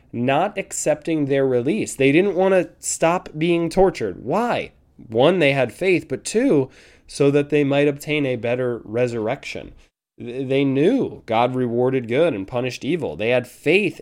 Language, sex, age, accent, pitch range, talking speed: English, male, 20-39, American, 125-165 Hz, 160 wpm